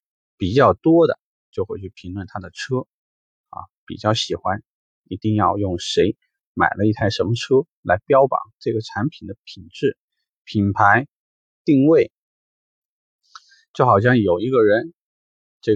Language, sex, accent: Chinese, male, native